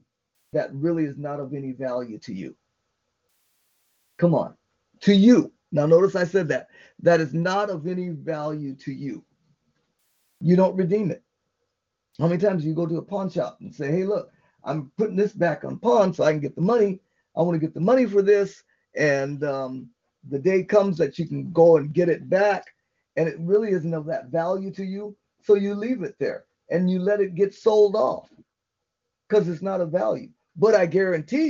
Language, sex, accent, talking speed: English, male, American, 200 wpm